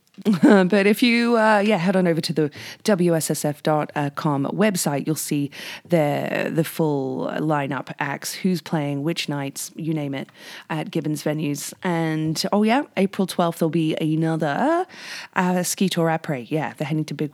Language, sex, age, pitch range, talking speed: English, female, 30-49, 150-195 Hz, 160 wpm